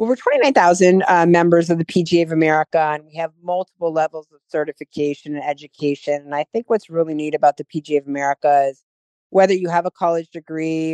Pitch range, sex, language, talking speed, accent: 150-175 Hz, female, English, 195 wpm, American